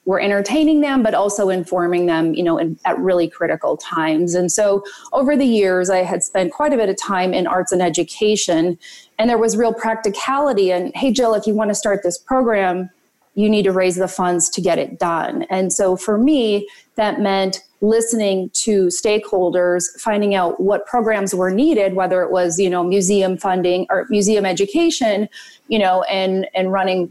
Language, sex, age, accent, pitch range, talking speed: English, female, 30-49, American, 175-210 Hz, 190 wpm